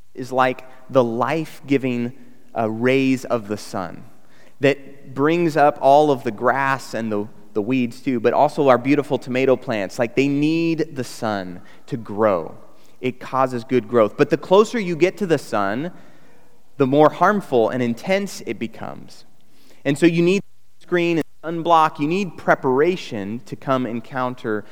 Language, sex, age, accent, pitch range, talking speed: English, male, 30-49, American, 125-160 Hz, 165 wpm